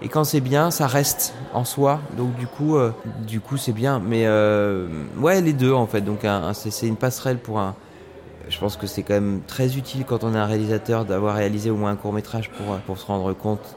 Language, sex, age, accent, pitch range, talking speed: French, male, 20-39, French, 110-140 Hz, 245 wpm